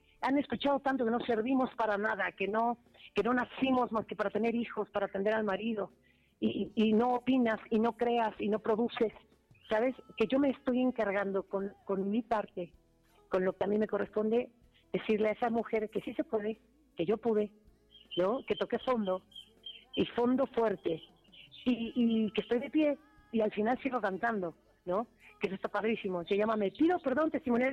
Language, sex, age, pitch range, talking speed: Spanish, female, 40-59, 210-260 Hz, 195 wpm